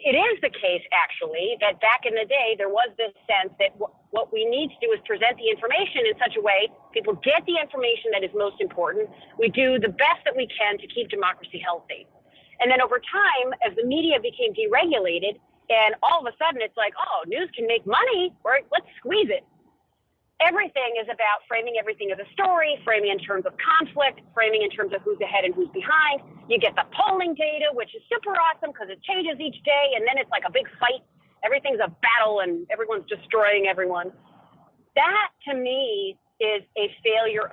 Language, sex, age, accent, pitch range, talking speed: English, female, 40-59, American, 220-370 Hz, 205 wpm